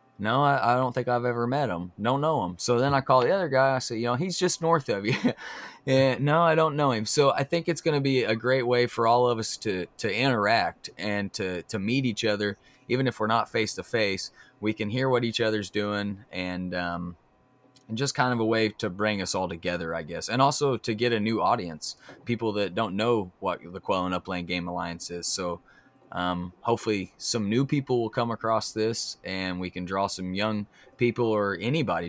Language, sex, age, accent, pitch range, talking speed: English, male, 20-39, American, 95-125 Hz, 230 wpm